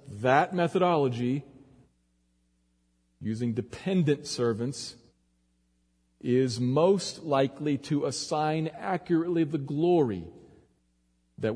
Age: 40-59